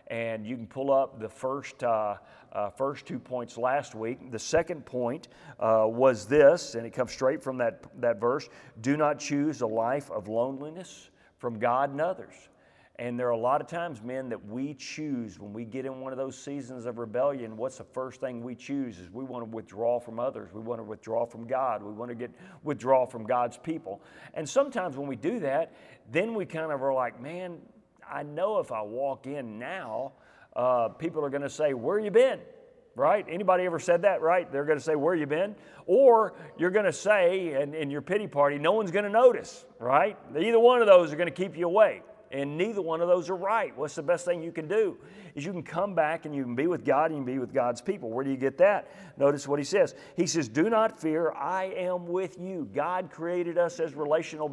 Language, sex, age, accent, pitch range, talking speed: English, male, 40-59, American, 130-175 Hz, 230 wpm